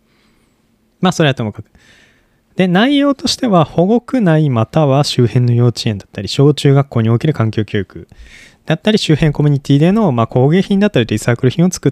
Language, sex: Japanese, male